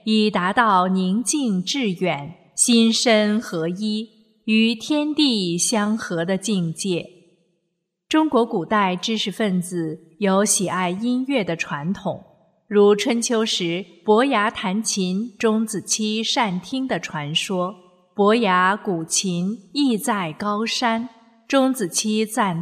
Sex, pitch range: female, 180-230 Hz